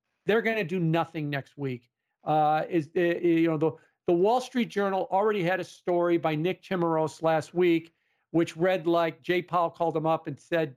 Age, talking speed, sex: 50-69, 200 wpm, male